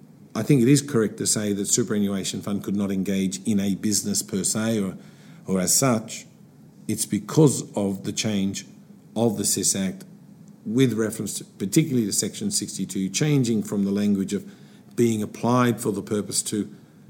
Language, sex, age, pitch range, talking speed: English, male, 50-69, 100-150 Hz, 170 wpm